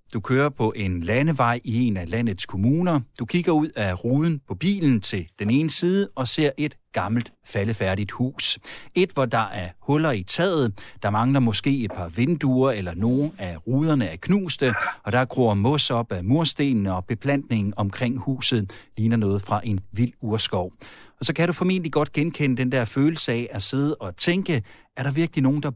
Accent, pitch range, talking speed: native, 110-145 Hz, 195 wpm